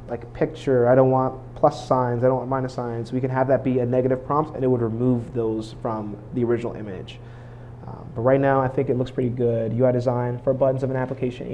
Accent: American